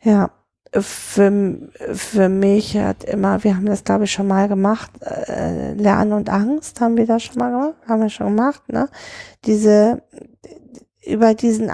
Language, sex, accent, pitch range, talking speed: German, female, German, 200-235 Hz, 160 wpm